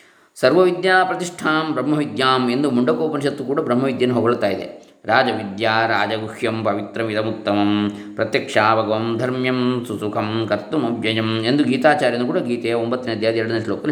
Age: 20-39